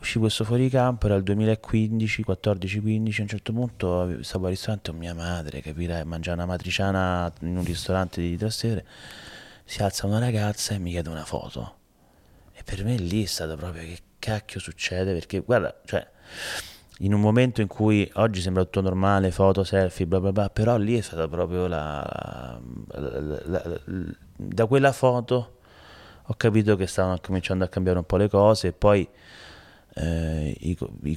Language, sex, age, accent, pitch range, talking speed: Italian, male, 30-49, native, 90-105 Hz, 175 wpm